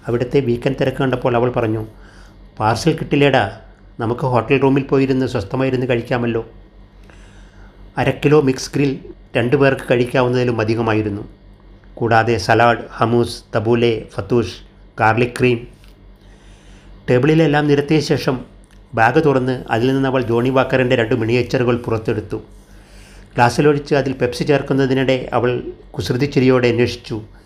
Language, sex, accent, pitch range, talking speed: Malayalam, male, native, 105-130 Hz, 105 wpm